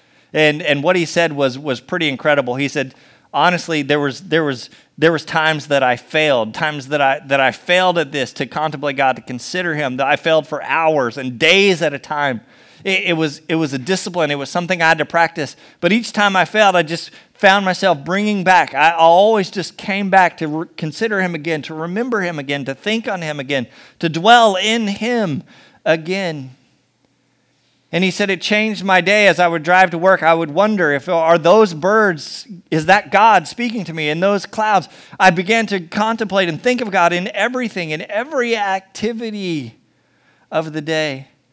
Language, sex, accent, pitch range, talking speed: English, male, American, 150-195 Hz, 200 wpm